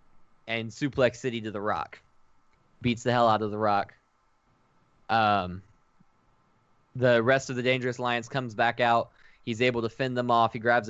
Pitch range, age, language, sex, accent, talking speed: 115-135 Hz, 10-29, English, male, American, 170 wpm